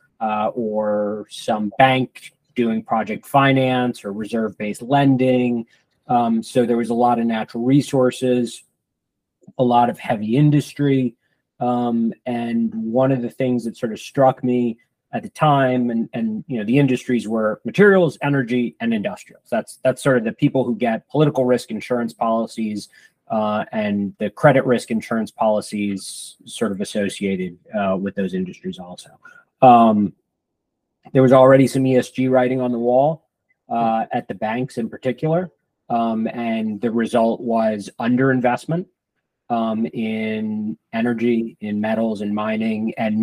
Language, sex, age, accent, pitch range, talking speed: English, male, 20-39, American, 110-130 Hz, 145 wpm